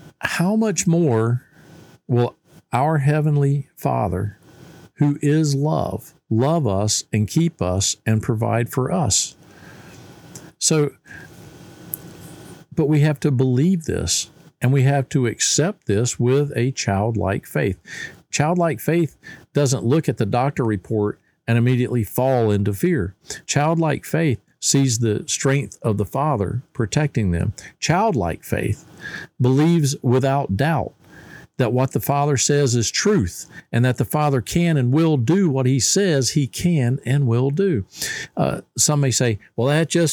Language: English